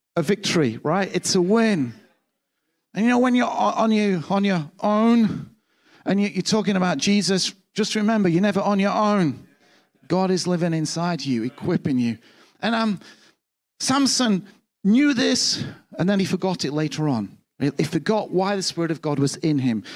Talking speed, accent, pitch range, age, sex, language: 165 wpm, British, 155-215 Hz, 40-59, male, English